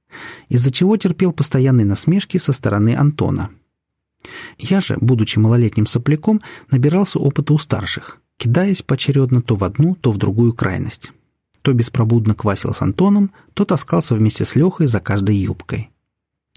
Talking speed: 140 wpm